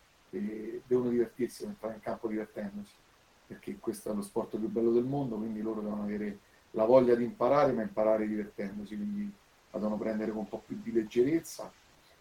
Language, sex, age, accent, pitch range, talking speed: Italian, male, 40-59, native, 105-120 Hz, 180 wpm